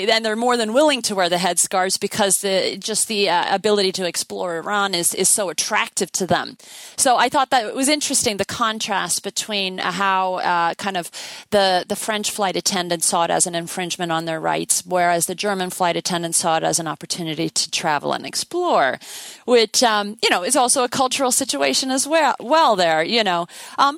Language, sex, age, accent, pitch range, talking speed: English, female, 40-59, American, 180-220 Hz, 205 wpm